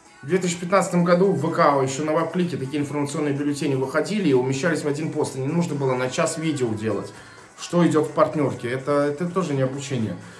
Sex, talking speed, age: male, 195 wpm, 20-39